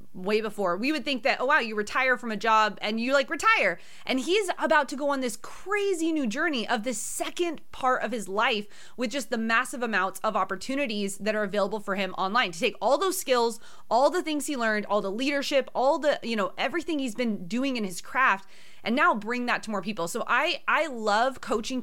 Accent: American